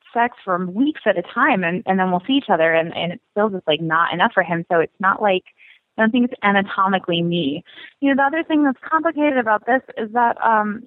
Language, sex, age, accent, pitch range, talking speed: English, female, 20-39, American, 190-260 Hz, 250 wpm